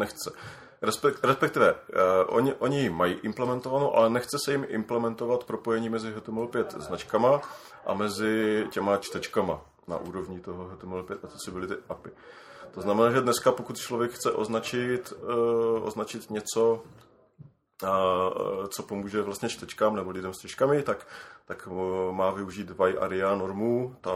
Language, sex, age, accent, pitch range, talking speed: Czech, male, 30-49, native, 105-130 Hz, 130 wpm